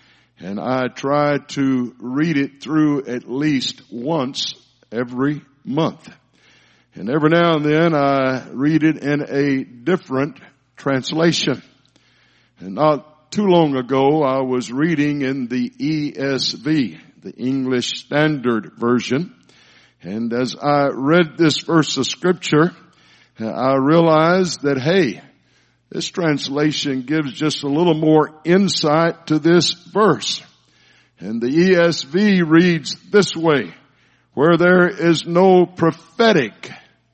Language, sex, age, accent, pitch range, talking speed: English, male, 60-79, American, 130-165 Hz, 120 wpm